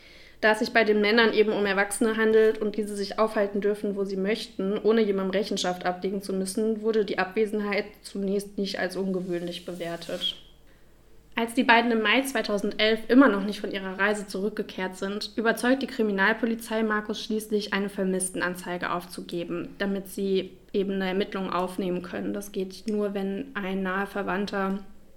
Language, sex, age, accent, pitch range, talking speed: German, female, 20-39, German, 190-220 Hz, 160 wpm